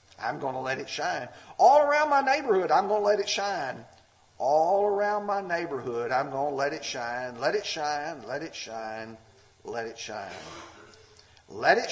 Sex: male